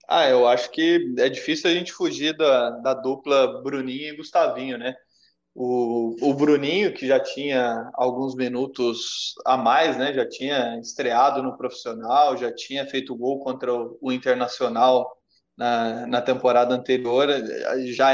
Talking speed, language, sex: 150 wpm, Portuguese, male